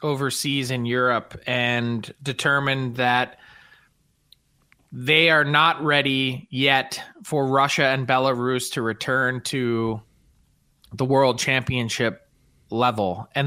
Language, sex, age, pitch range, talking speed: English, male, 20-39, 125-155 Hz, 100 wpm